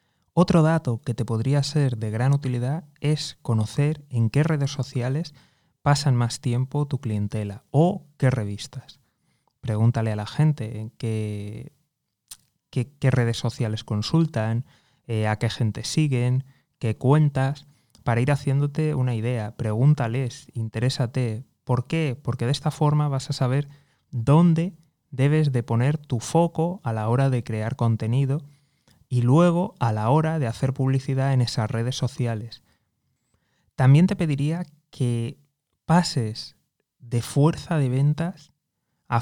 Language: Spanish